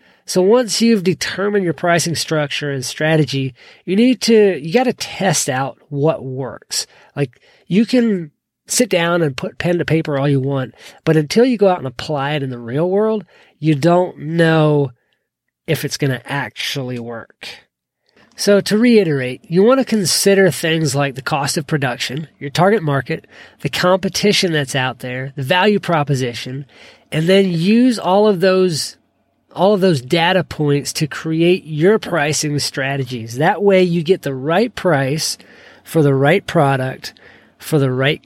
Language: English